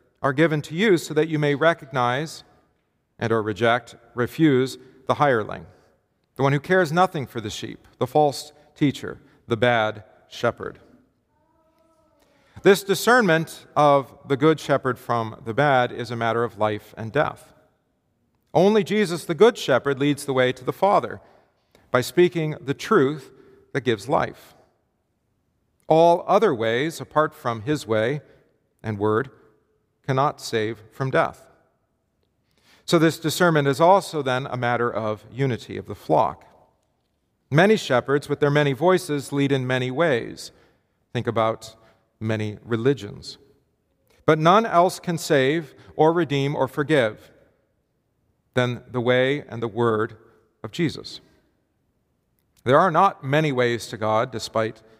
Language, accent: English, American